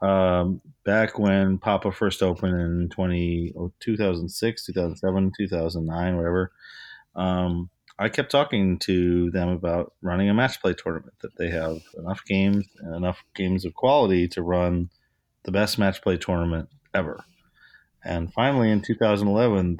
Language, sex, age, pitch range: English, male, 30-49, 90-105 Hz